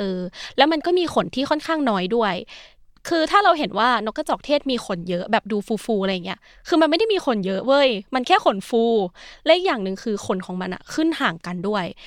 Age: 20-39